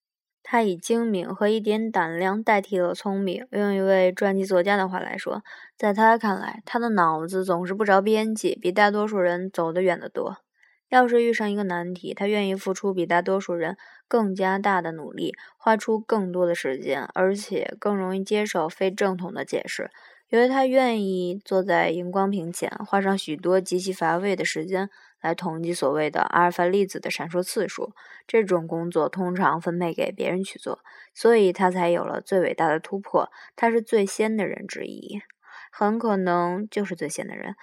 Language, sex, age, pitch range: Chinese, female, 20-39, 175-210 Hz